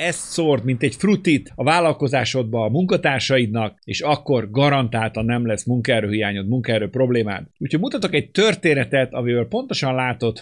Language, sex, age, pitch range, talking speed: Hungarian, male, 50-69, 110-140 Hz, 140 wpm